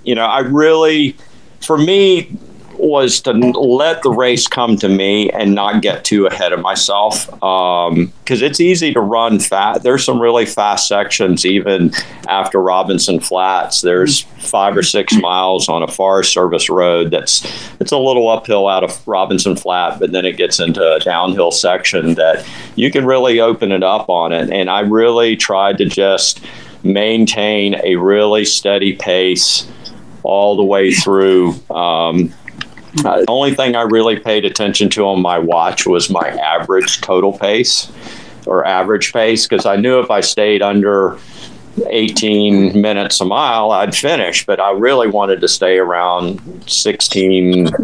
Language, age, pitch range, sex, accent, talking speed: English, 50-69, 95-115 Hz, male, American, 165 wpm